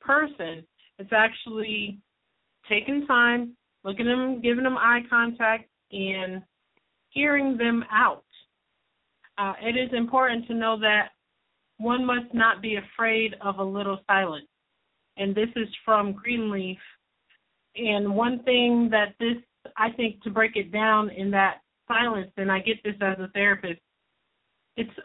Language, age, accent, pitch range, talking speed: English, 30-49, American, 195-235 Hz, 140 wpm